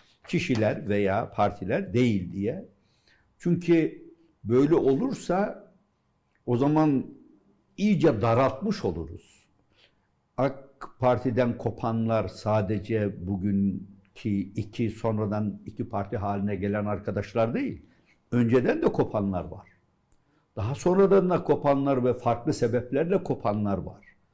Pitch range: 105-140 Hz